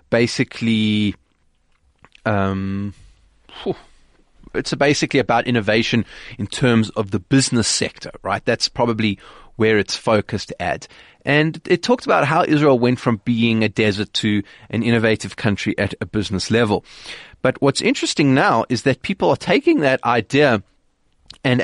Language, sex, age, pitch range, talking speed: English, male, 30-49, 105-130 Hz, 140 wpm